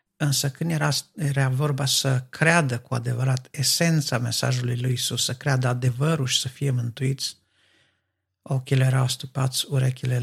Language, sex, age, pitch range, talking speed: Romanian, male, 50-69, 125-140 Hz, 140 wpm